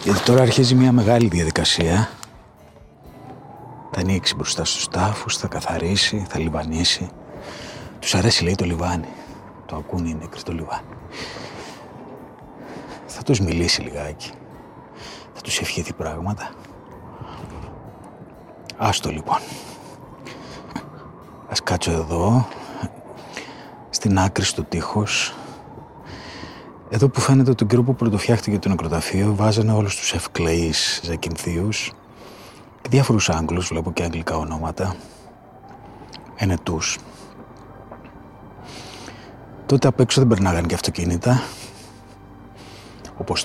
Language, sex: Greek, male